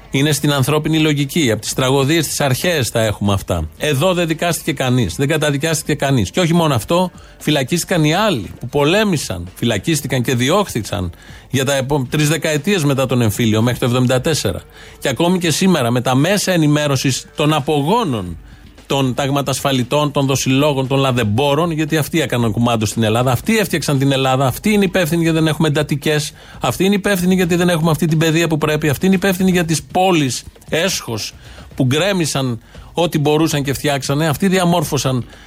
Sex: male